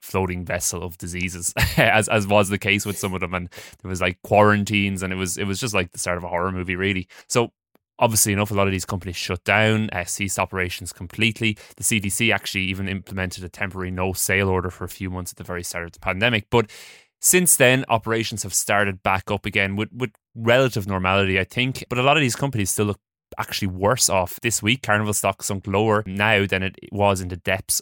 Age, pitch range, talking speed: 20-39, 95-115 Hz, 230 wpm